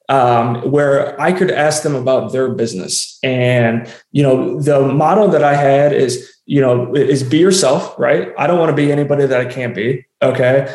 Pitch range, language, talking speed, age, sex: 125-155 Hz, English, 195 wpm, 20-39, male